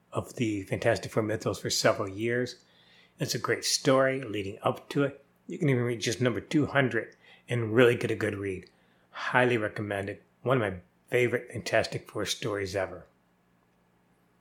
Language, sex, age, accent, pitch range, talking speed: English, male, 30-49, American, 100-125 Hz, 160 wpm